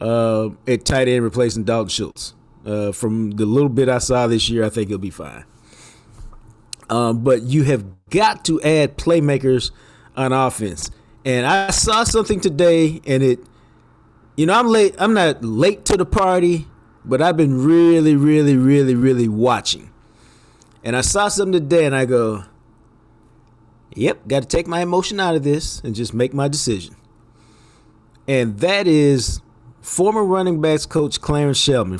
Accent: American